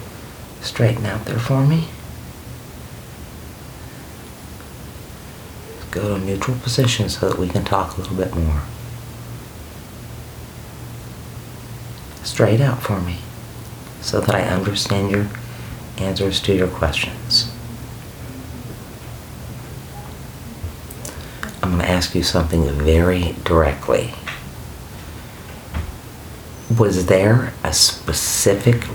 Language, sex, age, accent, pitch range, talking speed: English, male, 50-69, American, 85-115 Hz, 90 wpm